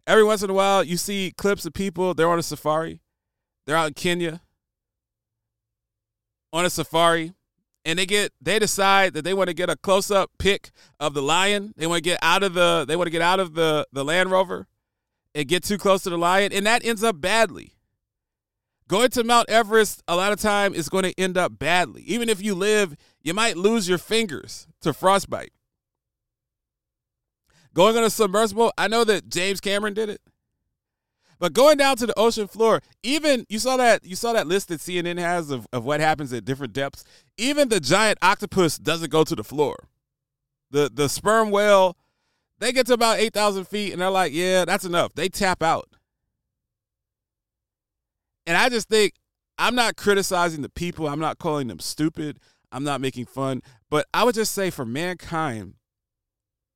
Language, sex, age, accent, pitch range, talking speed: English, male, 40-59, American, 150-205 Hz, 190 wpm